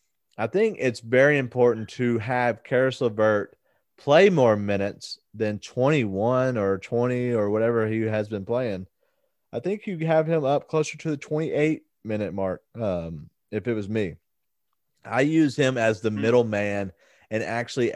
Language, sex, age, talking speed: English, male, 30-49, 155 wpm